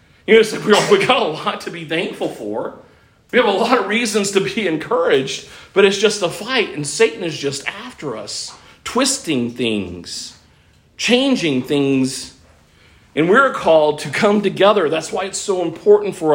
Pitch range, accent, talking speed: 145-205 Hz, American, 170 wpm